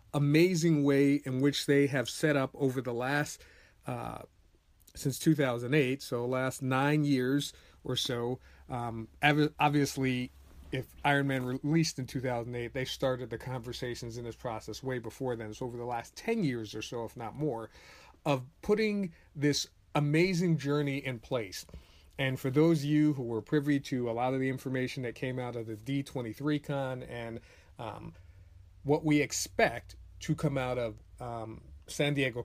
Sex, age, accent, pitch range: male, 40-59, American, 115-140 Hz